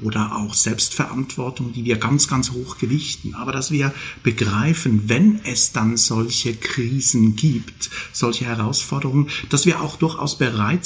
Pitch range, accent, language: 120-150 Hz, German, German